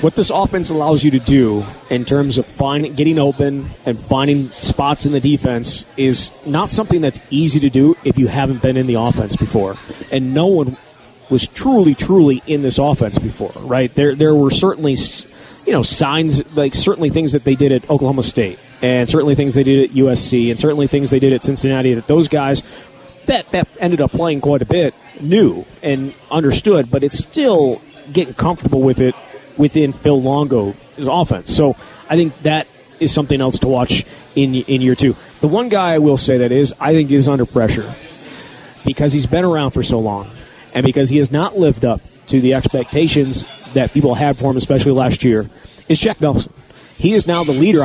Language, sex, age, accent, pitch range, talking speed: English, male, 30-49, American, 130-150 Hz, 200 wpm